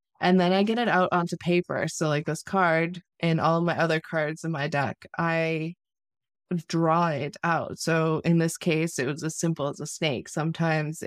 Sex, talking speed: female, 195 wpm